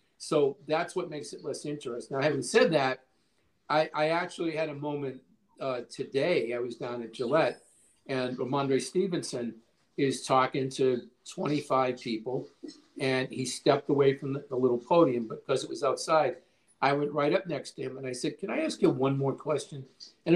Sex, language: male, English